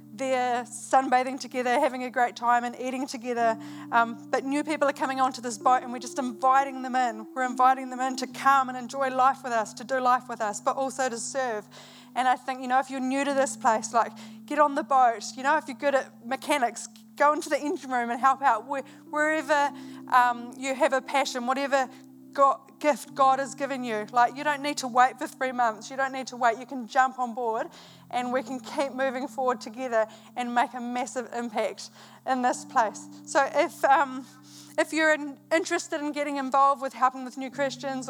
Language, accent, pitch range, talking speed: English, Australian, 245-275 Hz, 215 wpm